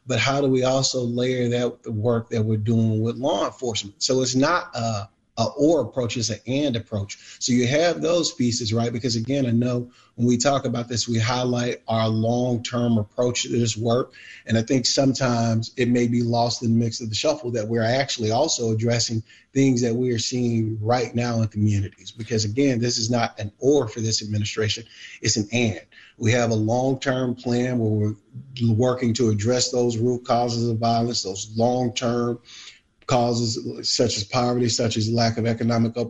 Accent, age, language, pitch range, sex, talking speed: American, 30-49, English, 115-125 Hz, male, 190 wpm